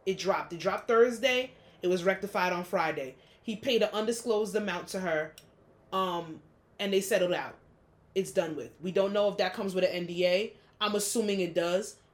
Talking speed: 190 wpm